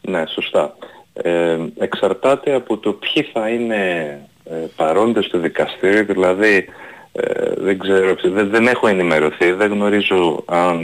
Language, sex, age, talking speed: Greek, male, 30-49, 135 wpm